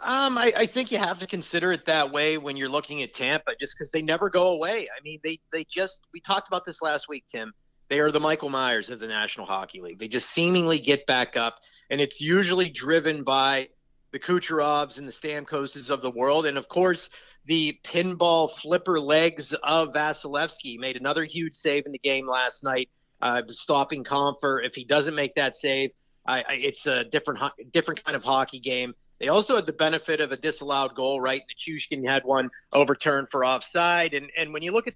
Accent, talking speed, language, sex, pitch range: American, 215 wpm, English, male, 135-170 Hz